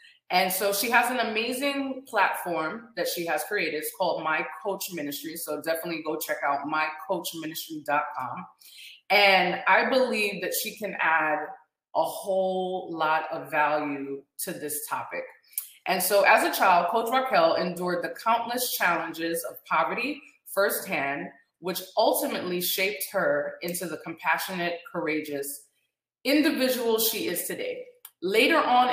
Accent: American